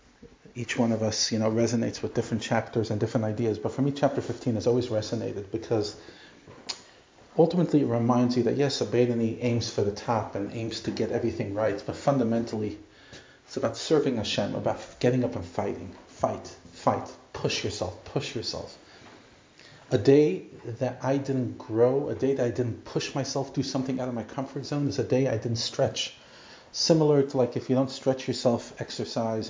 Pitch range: 115-135 Hz